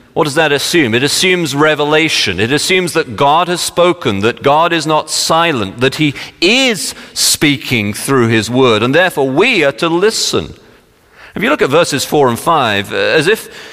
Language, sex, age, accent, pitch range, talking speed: English, male, 40-59, British, 115-185 Hz, 180 wpm